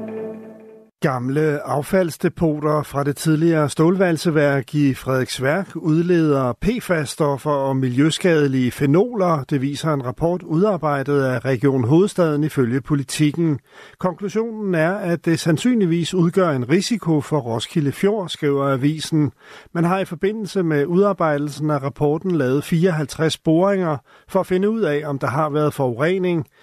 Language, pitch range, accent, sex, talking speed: Danish, 145-185 Hz, native, male, 130 wpm